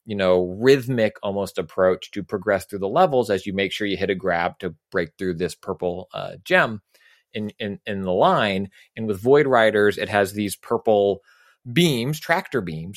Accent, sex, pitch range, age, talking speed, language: American, male, 100-130 Hz, 30-49, 190 wpm, English